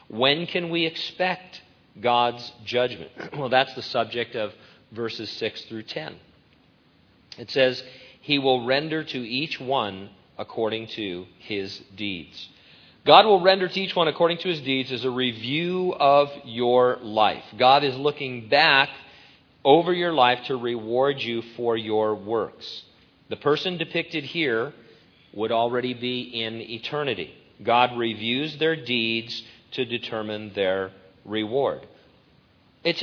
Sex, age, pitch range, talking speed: male, 40-59, 110-140 Hz, 135 wpm